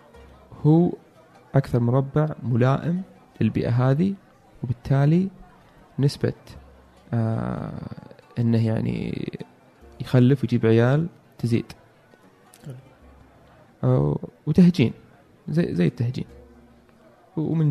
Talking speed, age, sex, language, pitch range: 70 wpm, 20-39, male, Arabic, 115-150 Hz